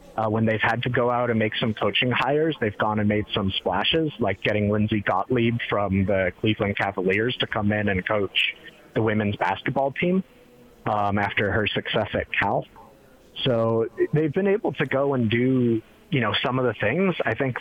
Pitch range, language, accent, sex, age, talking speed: 105-125 Hz, English, American, male, 30-49, 195 wpm